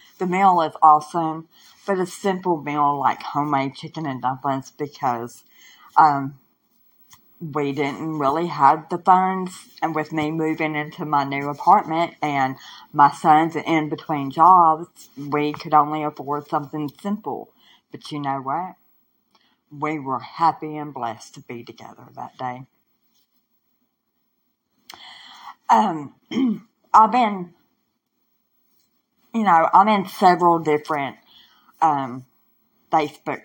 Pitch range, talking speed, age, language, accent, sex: 135-160 Hz, 120 wpm, 40-59, English, American, female